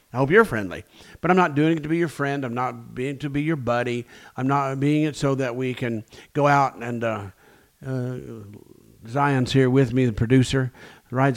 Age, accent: 50-69, American